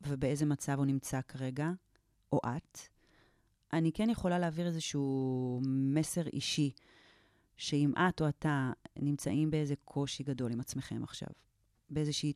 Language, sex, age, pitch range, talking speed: Hebrew, female, 30-49, 130-165 Hz, 125 wpm